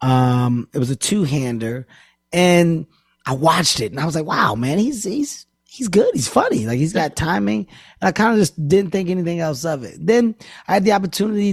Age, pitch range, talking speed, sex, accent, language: 20-39, 130-175 Hz, 215 wpm, male, American, English